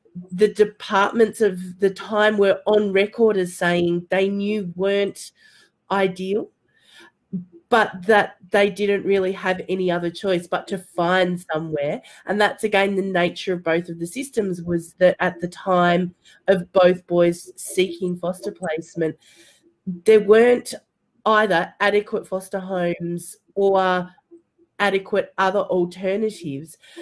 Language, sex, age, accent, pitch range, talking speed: English, female, 30-49, Australian, 180-205 Hz, 130 wpm